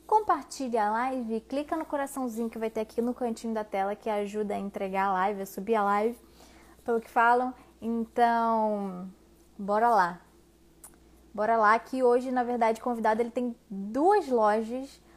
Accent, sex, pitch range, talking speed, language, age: Brazilian, female, 215-255 Hz, 160 wpm, Portuguese, 20-39